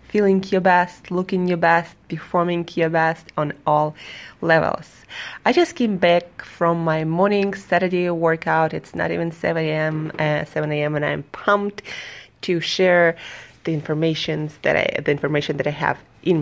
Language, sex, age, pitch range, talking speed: English, female, 20-39, 160-190 Hz, 160 wpm